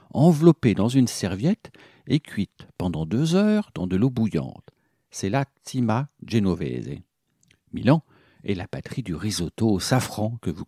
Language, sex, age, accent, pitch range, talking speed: French, male, 60-79, French, 95-140 Hz, 150 wpm